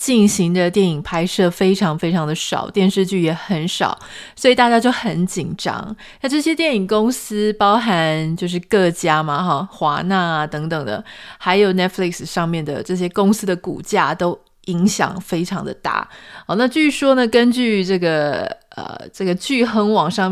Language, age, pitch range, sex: Chinese, 20-39, 170-215 Hz, female